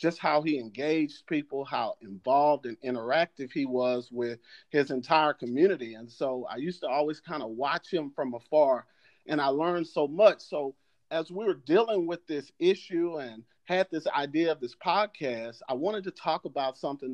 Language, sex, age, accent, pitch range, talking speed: English, male, 40-59, American, 130-175 Hz, 185 wpm